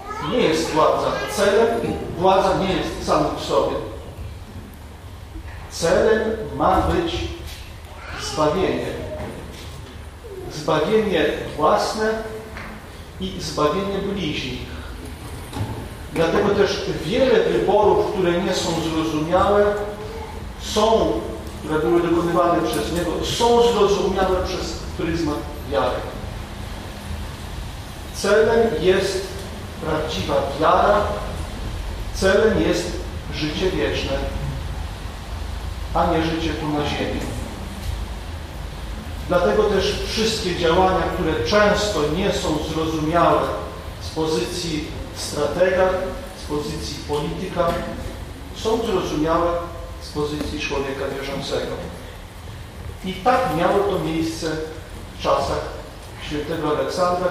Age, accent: 40-59, native